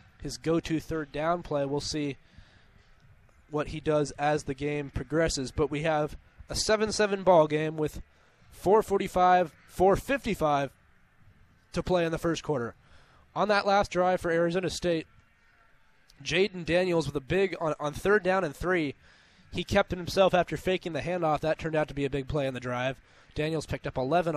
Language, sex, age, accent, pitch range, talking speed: English, male, 20-39, American, 145-170 Hz, 175 wpm